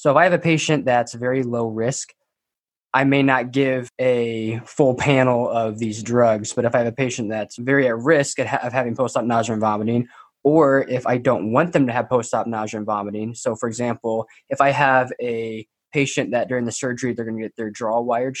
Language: English